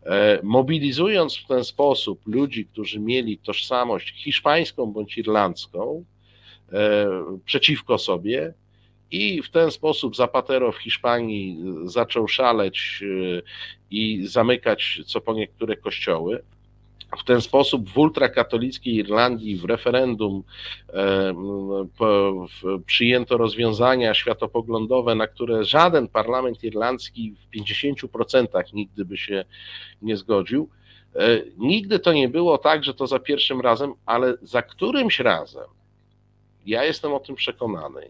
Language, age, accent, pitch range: Polish, 50-69, native, 100-130 Hz